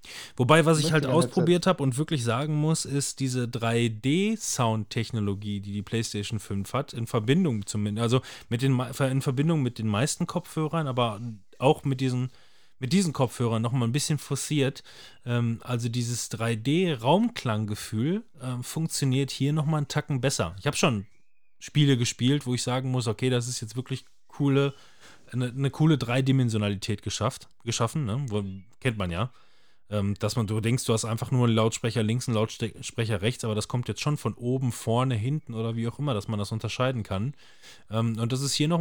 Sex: male